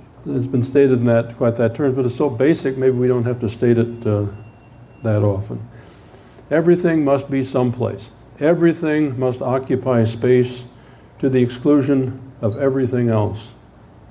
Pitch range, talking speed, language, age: 115-135 Hz, 155 wpm, English, 50-69